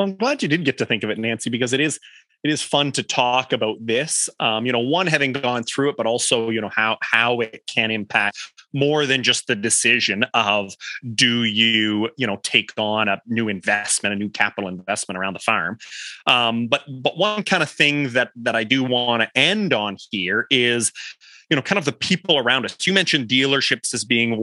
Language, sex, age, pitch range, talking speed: English, male, 30-49, 110-140 Hz, 220 wpm